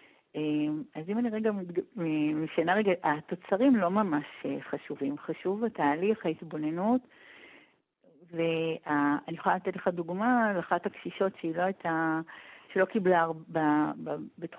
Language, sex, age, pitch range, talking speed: Hebrew, female, 50-69, 160-215 Hz, 105 wpm